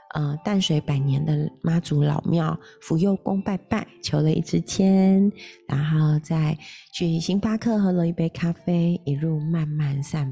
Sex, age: female, 30-49